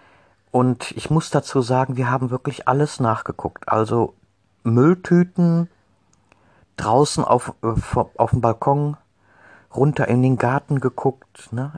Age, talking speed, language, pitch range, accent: 50-69, 120 wpm, German, 100-125 Hz, German